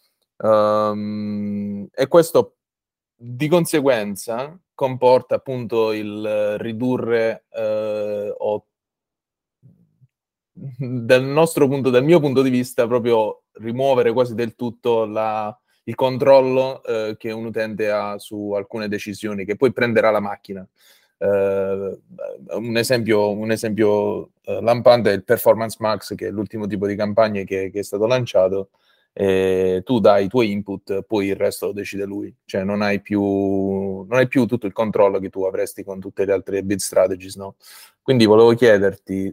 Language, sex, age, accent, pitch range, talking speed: Italian, male, 20-39, native, 100-120 Hz, 135 wpm